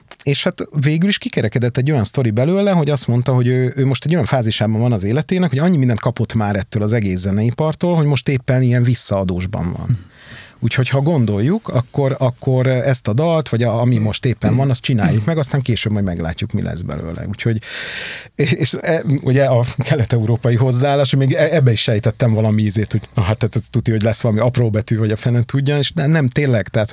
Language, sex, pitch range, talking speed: Hungarian, male, 115-135 Hz, 210 wpm